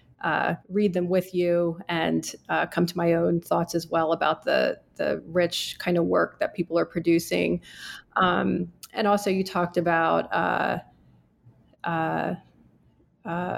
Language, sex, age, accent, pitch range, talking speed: English, female, 30-49, American, 180-200 Hz, 150 wpm